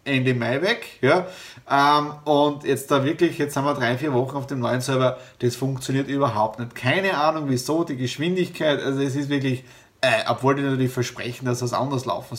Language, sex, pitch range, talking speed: German, male, 130-165 Hz, 200 wpm